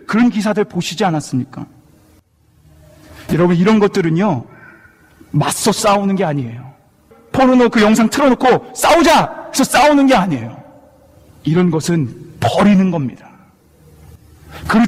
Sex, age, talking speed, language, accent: male, 40-59, 100 wpm, English, Korean